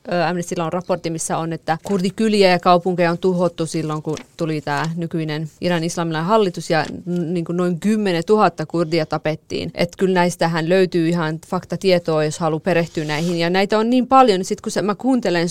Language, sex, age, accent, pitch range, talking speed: Finnish, female, 30-49, native, 165-190 Hz, 170 wpm